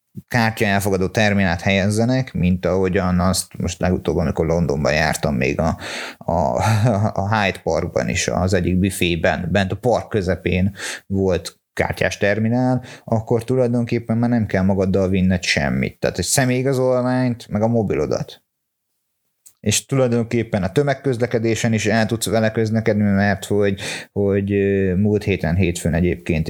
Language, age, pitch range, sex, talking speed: Hungarian, 30-49, 95-115 Hz, male, 130 wpm